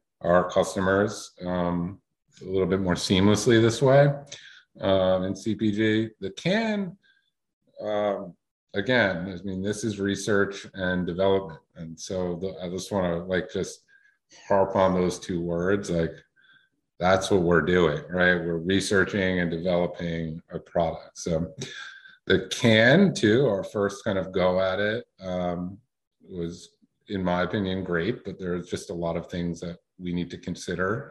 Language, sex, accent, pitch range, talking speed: English, male, American, 85-100 Hz, 150 wpm